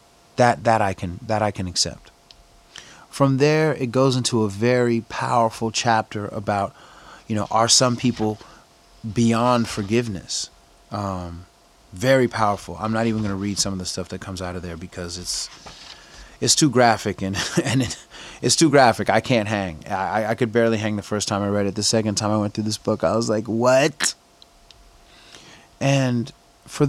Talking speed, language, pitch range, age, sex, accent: 185 wpm, English, 100-115 Hz, 30-49, male, American